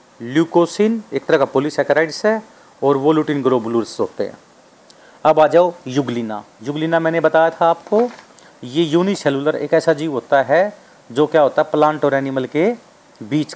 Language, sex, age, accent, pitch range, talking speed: Hindi, male, 40-59, native, 140-180 Hz, 165 wpm